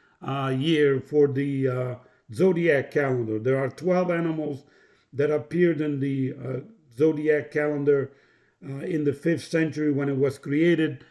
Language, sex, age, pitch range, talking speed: English, male, 50-69, 140-160 Hz, 145 wpm